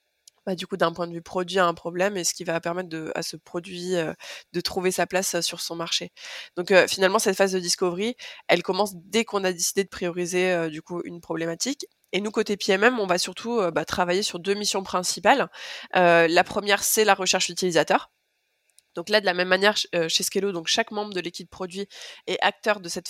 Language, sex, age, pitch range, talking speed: French, female, 20-39, 175-210 Hz, 225 wpm